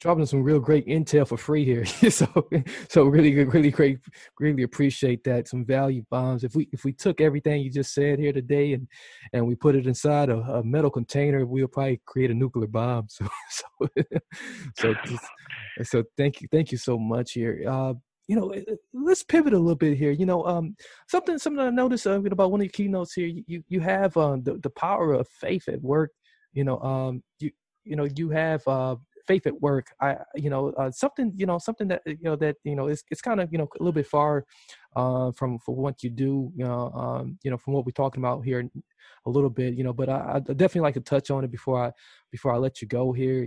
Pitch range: 130-170 Hz